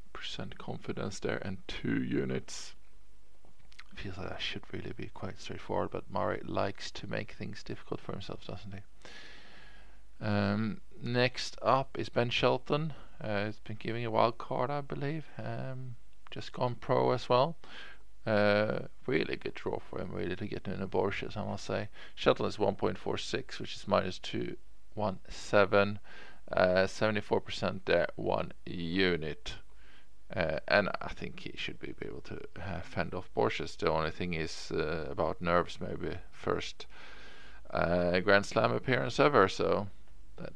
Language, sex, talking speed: English, male, 150 wpm